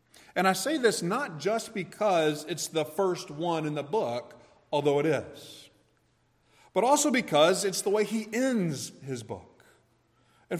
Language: English